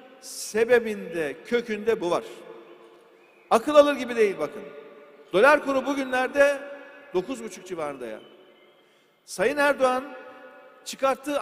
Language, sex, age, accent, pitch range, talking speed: Turkish, male, 50-69, native, 235-295 Hz, 100 wpm